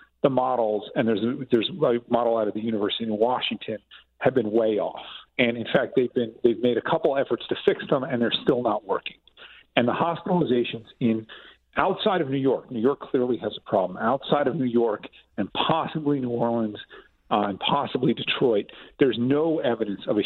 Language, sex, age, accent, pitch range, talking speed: English, male, 40-59, American, 110-140 Hz, 200 wpm